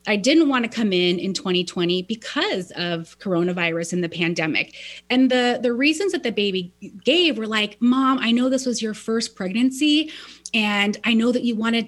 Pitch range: 195-260 Hz